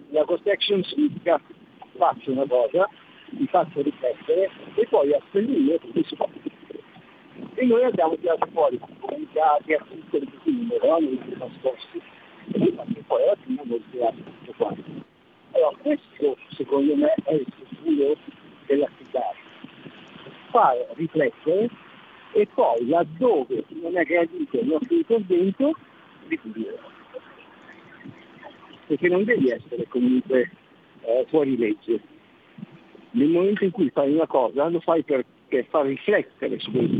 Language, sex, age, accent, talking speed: Italian, male, 50-69, native, 145 wpm